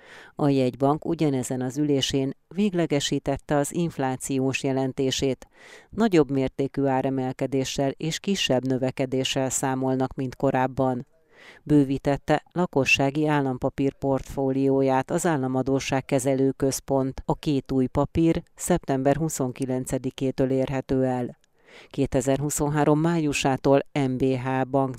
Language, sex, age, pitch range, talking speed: Hungarian, female, 40-59, 130-145 Hz, 90 wpm